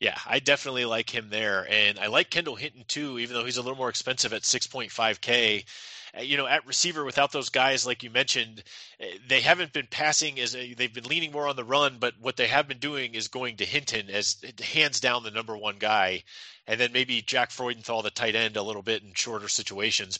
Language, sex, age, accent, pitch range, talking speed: English, male, 30-49, American, 125-155 Hz, 225 wpm